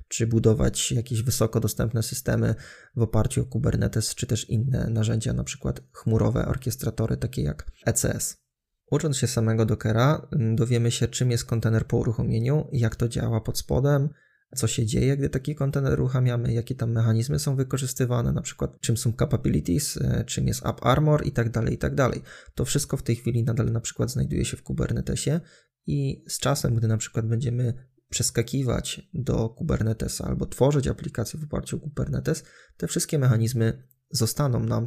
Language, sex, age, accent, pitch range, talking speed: Polish, male, 20-39, native, 115-130 Hz, 170 wpm